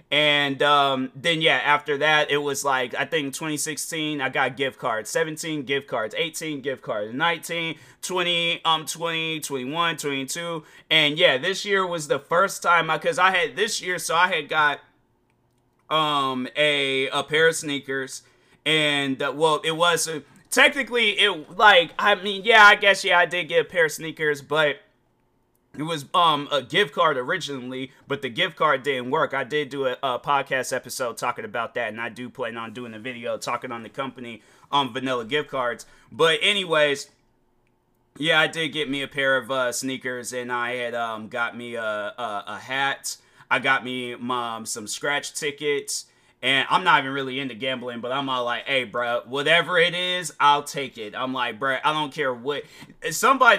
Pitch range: 130-165 Hz